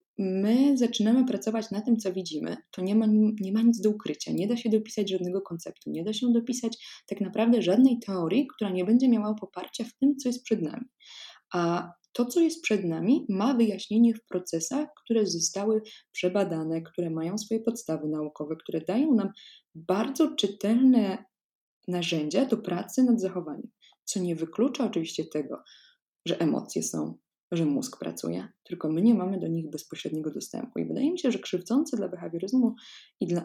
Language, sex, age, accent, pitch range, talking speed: Polish, female, 20-39, native, 175-235 Hz, 170 wpm